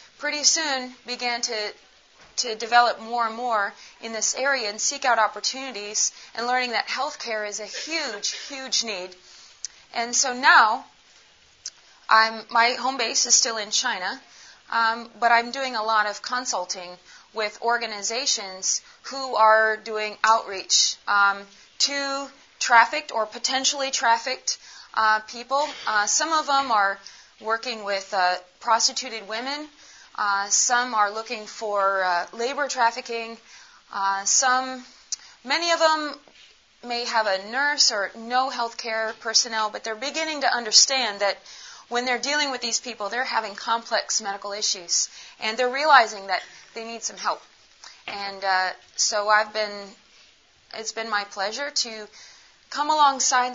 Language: English